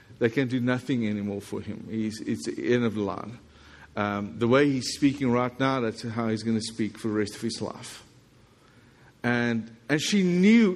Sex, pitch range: male, 115-155 Hz